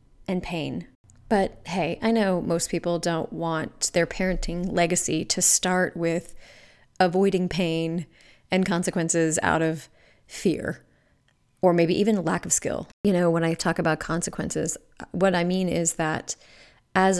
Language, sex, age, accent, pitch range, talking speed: English, female, 30-49, American, 165-185 Hz, 145 wpm